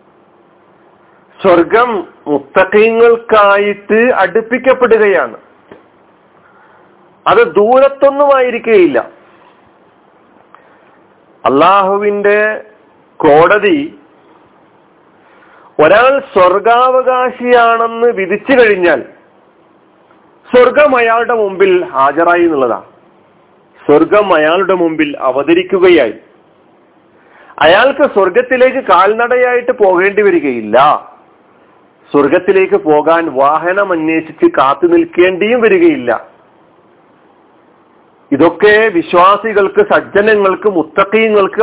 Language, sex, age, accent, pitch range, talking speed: Malayalam, male, 50-69, native, 180-260 Hz, 50 wpm